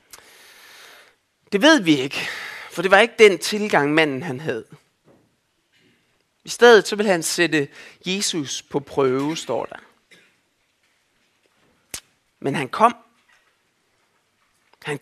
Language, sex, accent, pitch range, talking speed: Danish, male, native, 150-235 Hz, 110 wpm